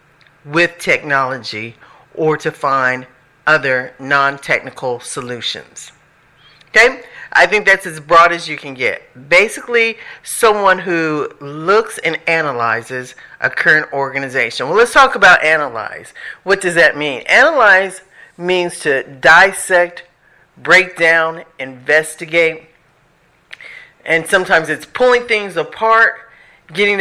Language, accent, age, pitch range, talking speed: English, American, 50-69, 145-190 Hz, 110 wpm